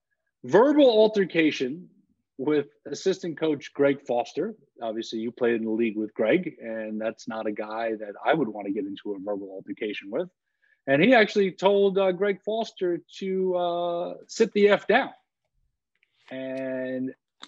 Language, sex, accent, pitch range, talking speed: English, male, American, 120-175 Hz, 155 wpm